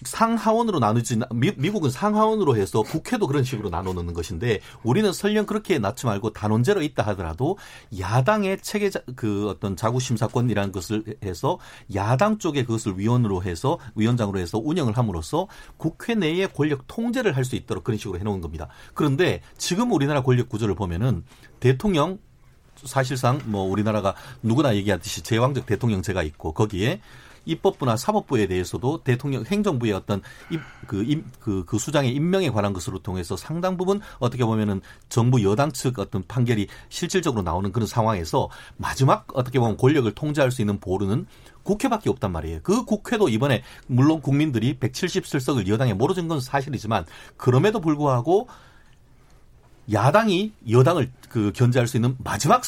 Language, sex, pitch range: Korean, male, 105-150 Hz